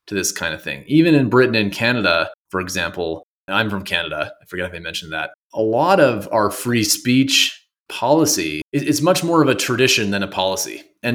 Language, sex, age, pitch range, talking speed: English, male, 30-49, 100-125 Hz, 210 wpm